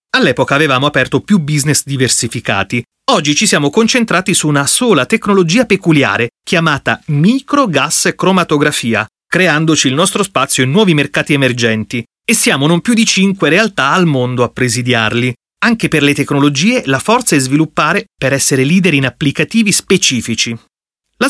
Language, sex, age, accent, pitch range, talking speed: Italian, male, 30-49, native, 125-195 Hz, 145 wpm